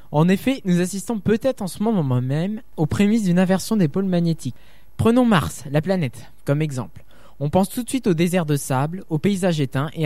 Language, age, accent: French, 20-39, French